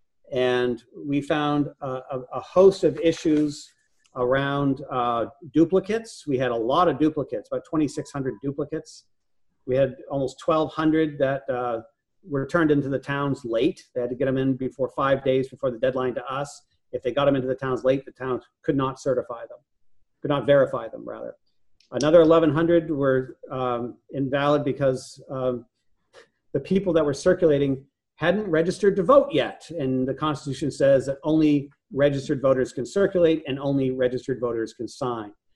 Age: 40-59